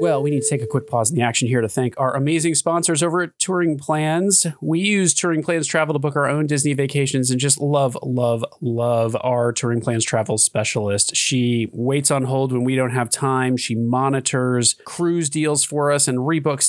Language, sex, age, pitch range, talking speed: English, male, 30-49, 115-150 Hz, 210 wpm